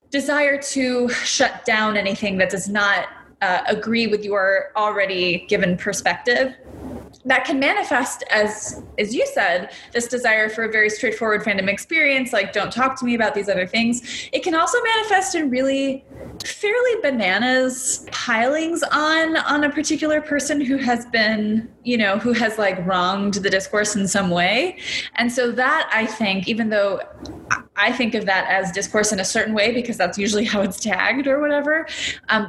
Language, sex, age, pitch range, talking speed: English, female, 20-39, 200-260 Hz, 170 wpm